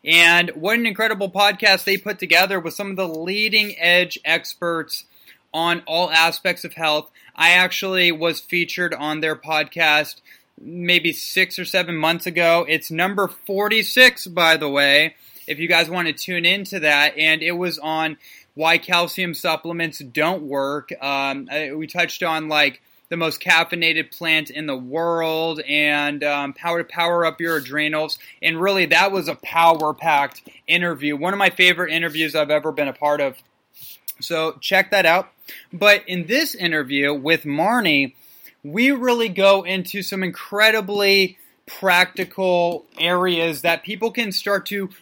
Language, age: English, 20-39